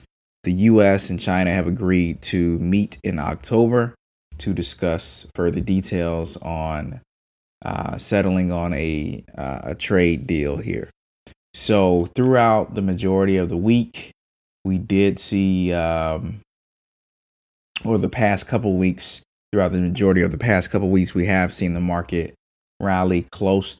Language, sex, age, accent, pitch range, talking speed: English, male, 20-39, American, 85-95 Hz, 140 wpm